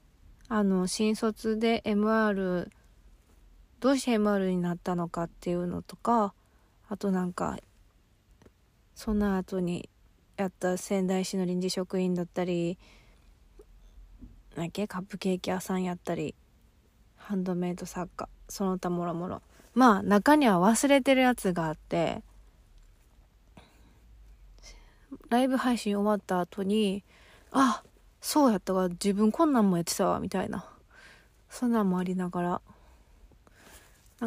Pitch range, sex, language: 175-220 Hz, female, Japanese